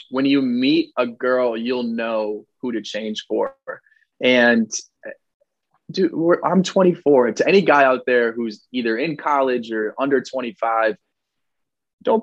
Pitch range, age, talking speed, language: 110-135 Hz, 20-39, 140 wpm, English